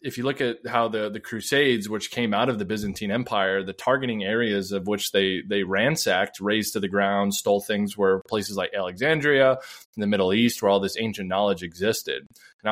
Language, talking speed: English, 210 wpm